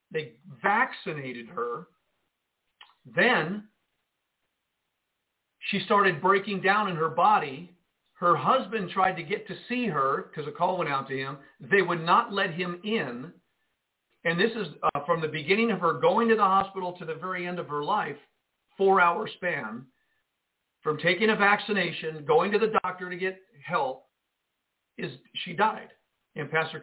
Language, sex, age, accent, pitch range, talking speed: English, male, 50-69, American, 155-200 Hz, 155 wpm